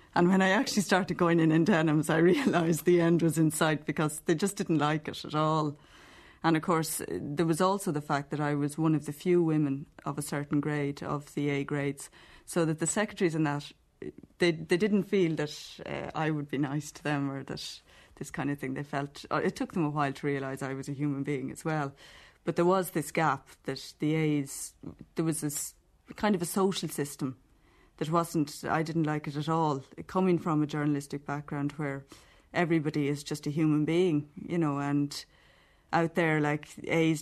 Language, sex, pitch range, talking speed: English, female, 145-170 Hz, 210 wpm